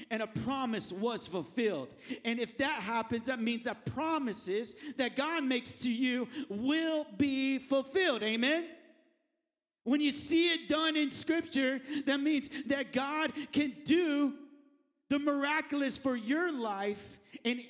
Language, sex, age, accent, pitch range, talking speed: English, male, 50-69, American, 215-285 Hz, 140 wpm